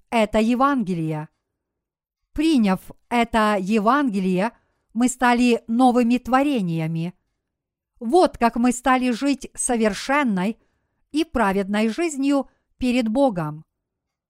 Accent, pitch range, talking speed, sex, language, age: native, 215-270 Hz, 85 wpm, female, Russian, 50-69